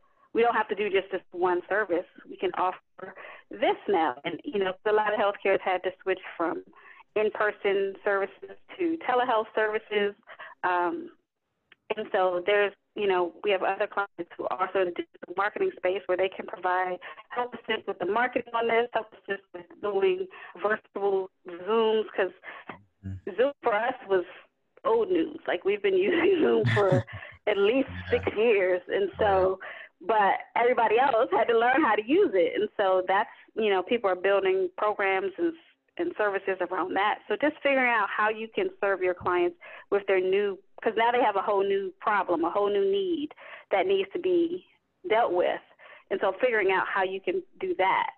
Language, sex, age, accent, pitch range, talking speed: English, female, 40-59, American, 190-285 Hz, 185 wpm